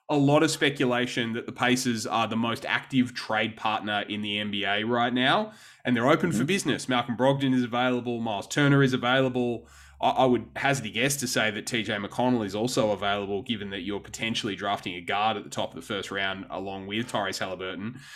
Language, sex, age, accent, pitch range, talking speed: English, male, 20-39, Australian, 110-135 Hz, 210 wpm